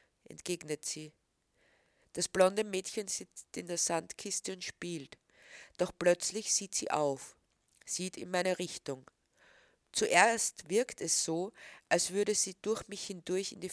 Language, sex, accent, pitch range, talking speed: German, female, Austrian, 150-190 Hz, 140 wpm